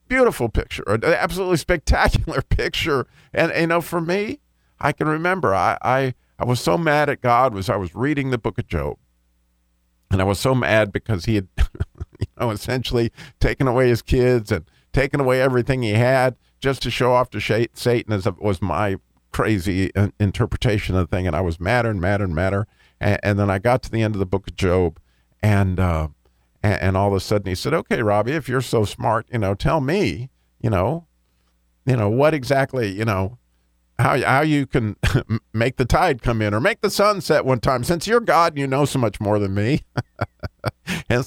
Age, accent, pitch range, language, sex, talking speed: 50-69, American, 95-135 Hz, English, male, 205 wpm